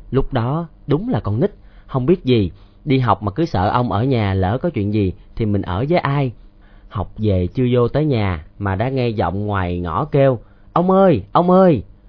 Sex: male